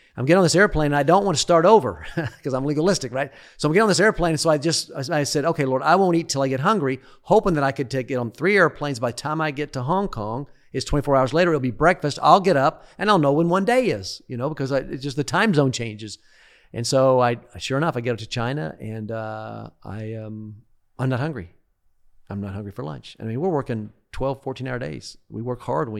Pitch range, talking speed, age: 115-150 Hz, 260 wpm, 40-59